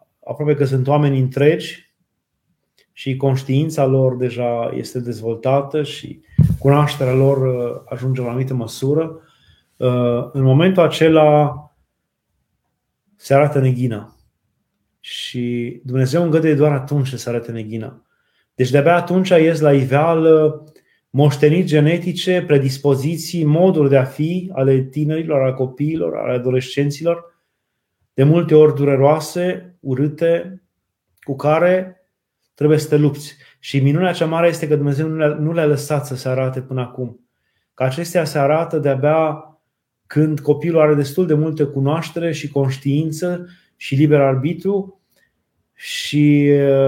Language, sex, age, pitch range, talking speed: Romanian, male, 30-49, 130-155 Hz, 125 wpm